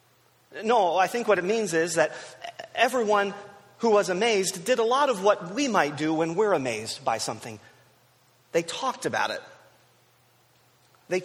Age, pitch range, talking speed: 30-49, 130-220 Hz, 160 wpm